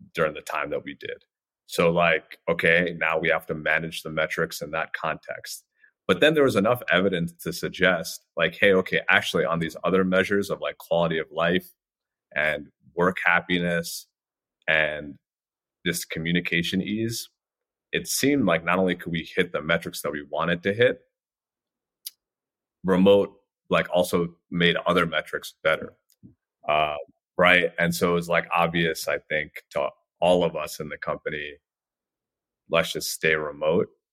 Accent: American